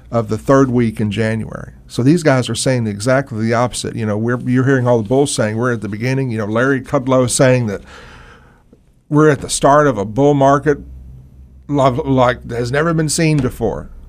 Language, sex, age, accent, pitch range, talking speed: English, male, 50-69, American, 115-145 Hz, 210 wpm